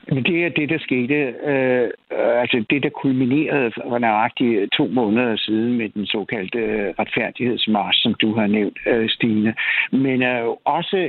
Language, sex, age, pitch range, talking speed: Danish, male, 60-79, 130-170 Hz, 145 wpm